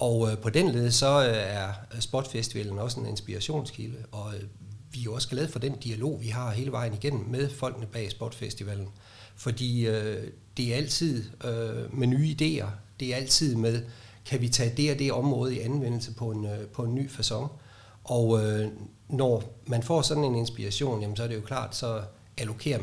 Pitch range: 110-130 Hz